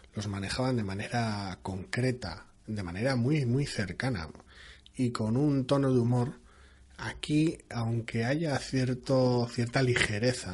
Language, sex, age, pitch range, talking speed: Spanish, male, 30-49, 100-130 Hz, 125 wpm